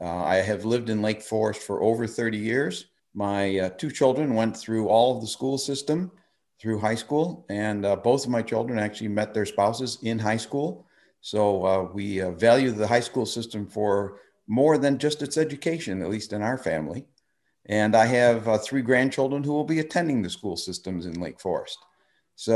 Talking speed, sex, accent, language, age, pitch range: 200 wpm, male, American, English, 50-69, 100-125 Hz